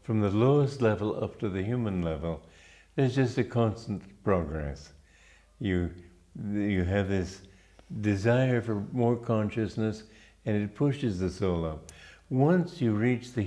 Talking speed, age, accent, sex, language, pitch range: 145 wpm, 50-69, American, male, English, 95-115 Hz